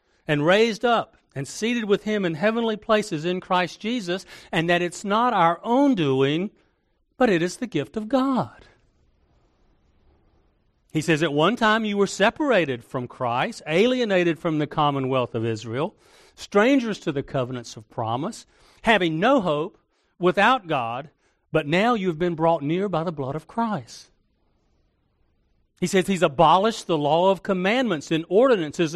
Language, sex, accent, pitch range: English, male, American, 135-210 Hz